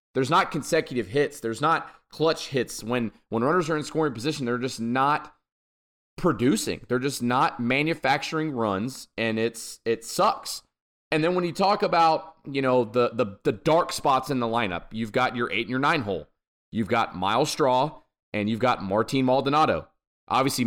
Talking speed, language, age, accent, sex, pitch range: 180 wpm, English, 30-49, American, male, 120-155 Hz